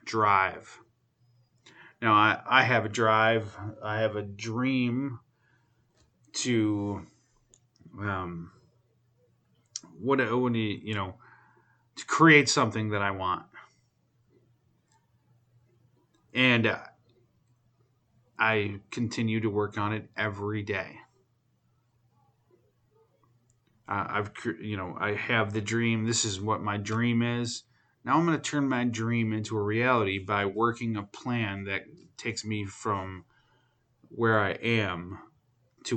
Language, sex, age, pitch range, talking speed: English, male, 30-49, 105-120 Hz, 115 wpm